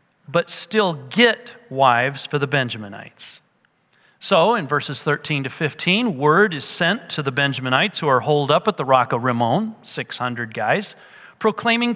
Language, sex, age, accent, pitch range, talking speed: English, male, 40-59, American, 140-205 Hz, 155 wpm